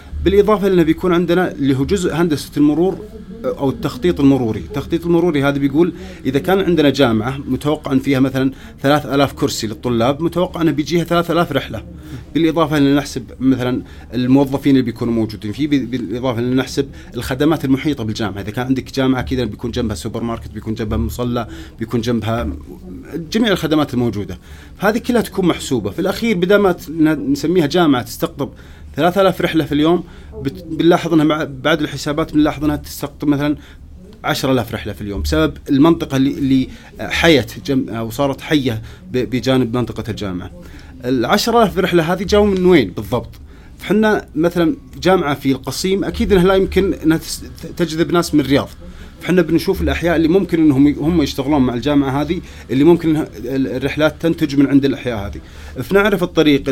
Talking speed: 150 wpm